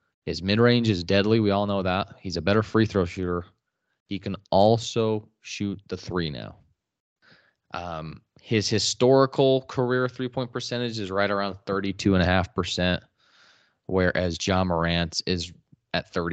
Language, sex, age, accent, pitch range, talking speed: English, male, 20-39, American, 85-115 Hz, 145 wpm